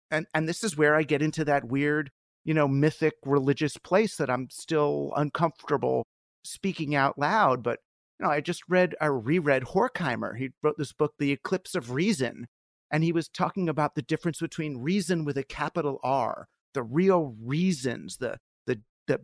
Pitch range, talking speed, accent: 135-170 Hz, 180 wpm, American